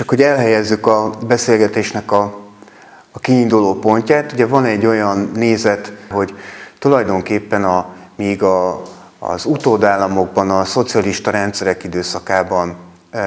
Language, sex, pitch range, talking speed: Hungarian, male, 95-110 Hz, 115 wpm